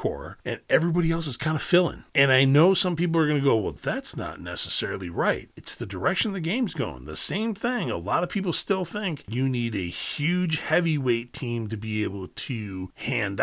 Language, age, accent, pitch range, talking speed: English, 40-59, American, 95-145 Hz, 210 wpm